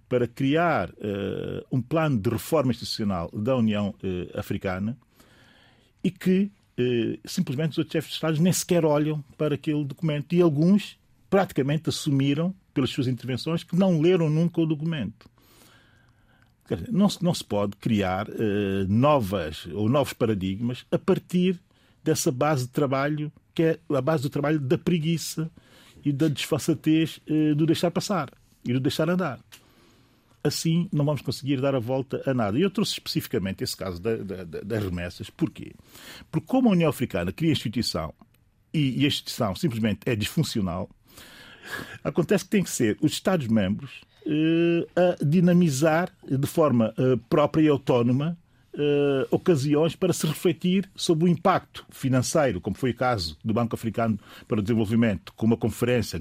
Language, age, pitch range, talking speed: Portuguese, 40-59, 115-165 Hz, 155 wpm